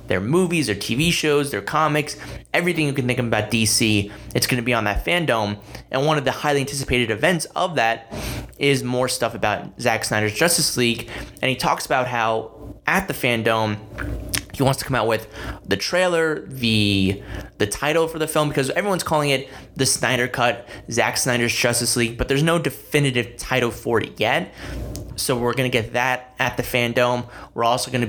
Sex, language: male, English